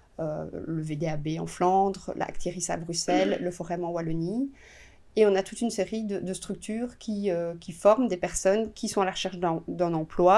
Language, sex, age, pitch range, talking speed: French, female, 30-49, 175-210 Hz, 210 wpm